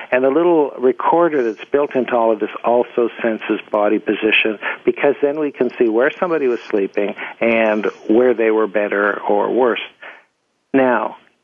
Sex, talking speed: male, 165 wpm